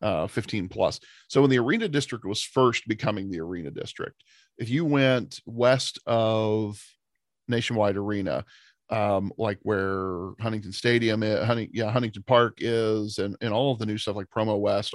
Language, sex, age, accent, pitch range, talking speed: English, male, 40-59, American, 105-125 Hz, 170 wpm